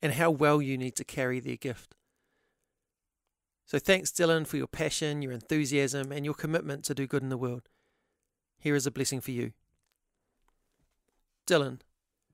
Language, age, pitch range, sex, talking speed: English, 40-59, 135-155 Hz, male, 160 wpm